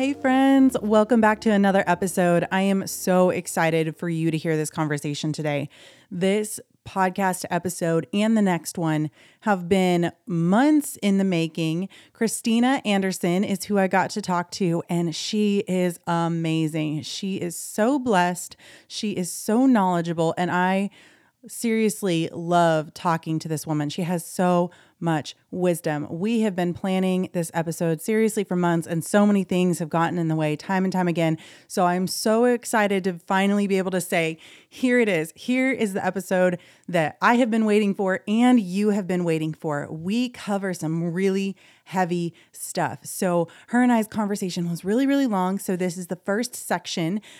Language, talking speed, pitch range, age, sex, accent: English, 175 wpm, 170-205 Hz, 30-49, female, American